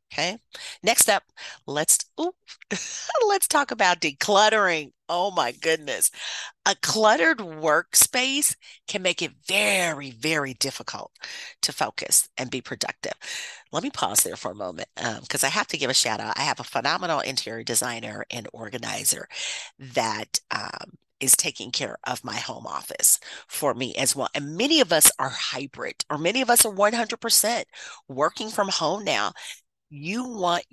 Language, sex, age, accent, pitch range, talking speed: English, female, 40-59, American, 145-205 Hz, 160 wpm